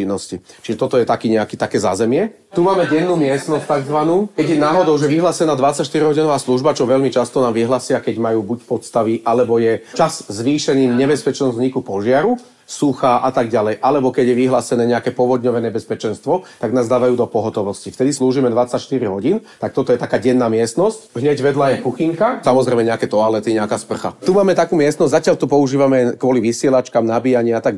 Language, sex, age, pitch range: Slovak, male, 30-49, 115-145 Hz